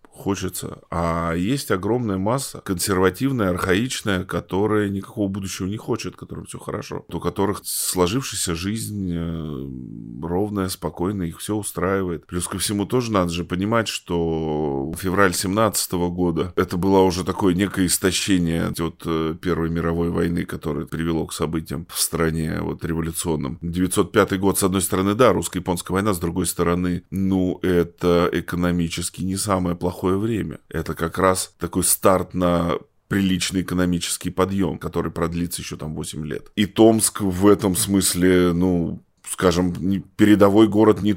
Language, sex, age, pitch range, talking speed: Russian, male, 20-39, 85-100 Hz, 140 wpm